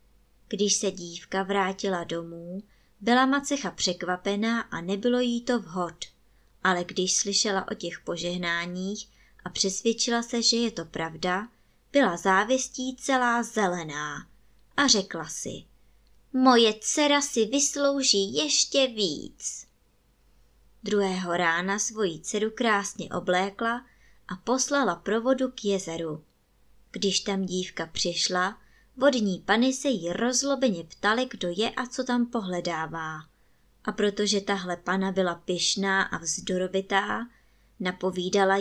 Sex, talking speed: male, 115 wpm